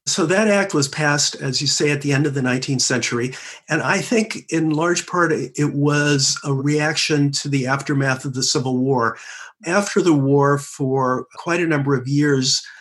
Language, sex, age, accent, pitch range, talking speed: English, male, 50-69, American, 120-145 Hz, 190 wpm